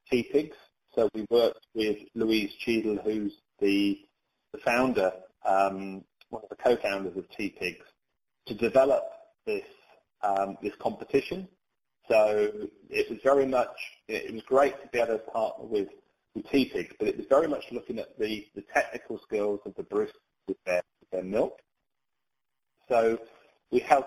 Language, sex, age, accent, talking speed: English, male, 30-49, British, 155 wpm